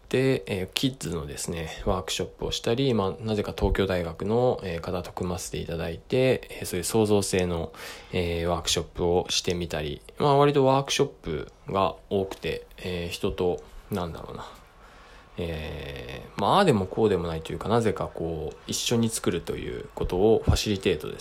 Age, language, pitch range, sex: 20-39, Japanese, 85-115 Hz, male